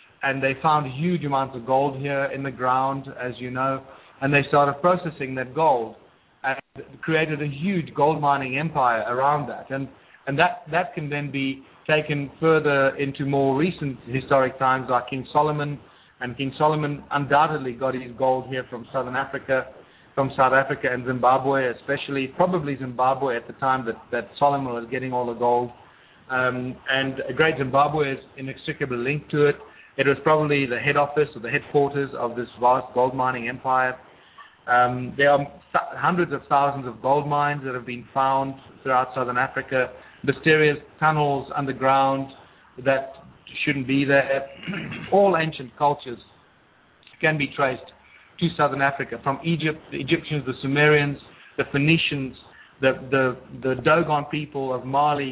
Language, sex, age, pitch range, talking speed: English, male, 30-49, 130-145 Hz, 160 wpm